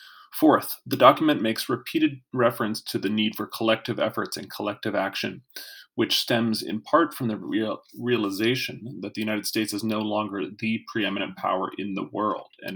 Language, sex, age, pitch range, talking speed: English, male, 30-49, 105-125 Hz, 170 wpm